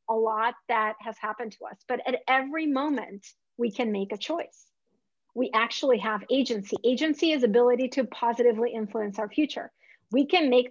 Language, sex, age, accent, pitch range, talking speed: English, female, 30-49, American, 220-270 Hz, 175 wpm